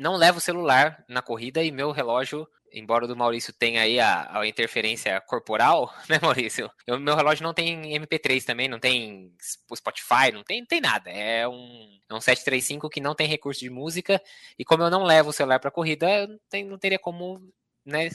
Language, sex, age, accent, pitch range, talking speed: Portuguese, male, 20-39, Brazilian, 125-160 Hz, 210 wpm